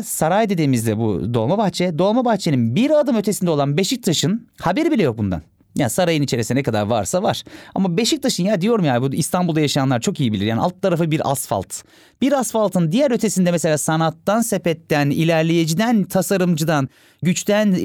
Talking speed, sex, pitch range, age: 160 wpm, male, 135-190 Hz, 30-49